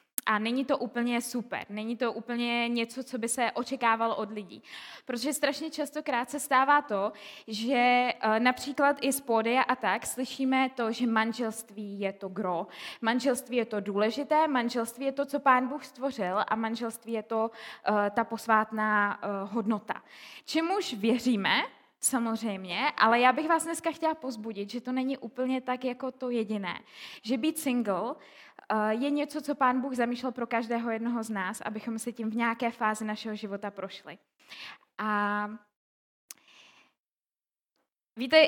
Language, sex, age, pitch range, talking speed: Czech, female, 20-39, 220-265 Hz, 150 wpm